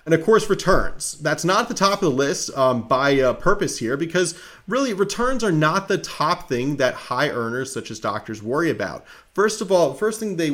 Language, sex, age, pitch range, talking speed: English, male, 30-49, 120-150 Hz, 220 wpm